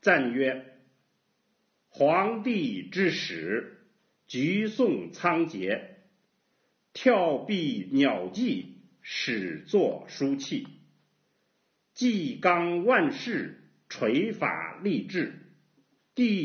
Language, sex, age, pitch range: Chinese, male, 50-69, 170-240 Hz